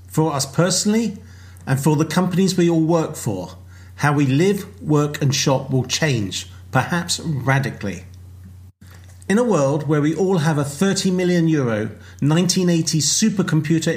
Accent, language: British, English